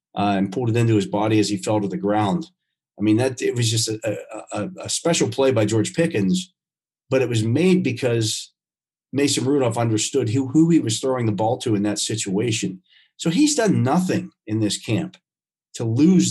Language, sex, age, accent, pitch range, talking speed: English, male, 40-59, American, 105-145 Hz, 200 wpm